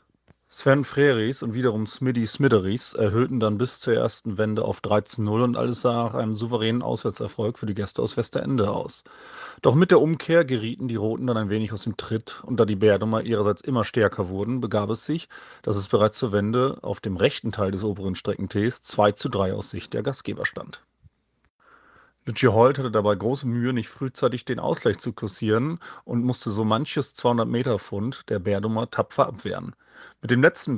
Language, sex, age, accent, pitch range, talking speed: German, male, 30-49, German, 105-125 Hz, 185 wpm